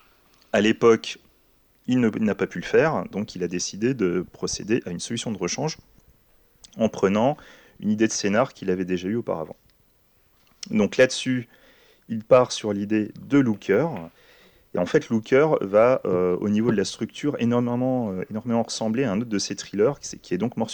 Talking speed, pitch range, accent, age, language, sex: 185 wpm, 90-120 Hz, French, 30-49, French, male